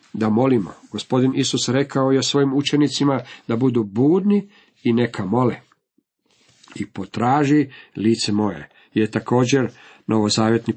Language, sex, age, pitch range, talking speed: Croatian, male, 50-69, 110-140 Hz, 115 wpm